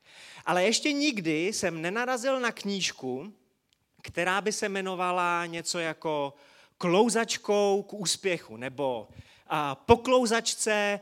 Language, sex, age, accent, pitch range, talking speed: Czech, male, 30-49, native, 130-195 Hz, 100 wpm